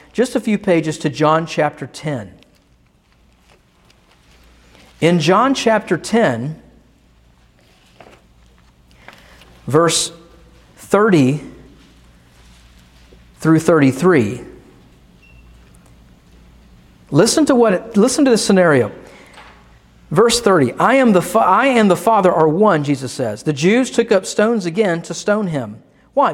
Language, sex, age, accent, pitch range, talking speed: English, male, 50-69, American, 135-210 Hz, 105 wpm